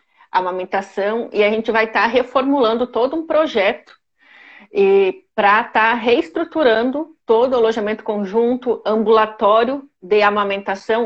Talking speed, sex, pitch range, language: 125 wpm, female, 215-270 Hz, Portuguese